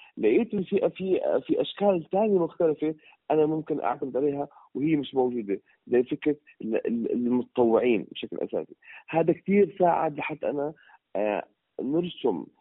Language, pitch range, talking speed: Arabic, 125-175 Hz, 115 wpm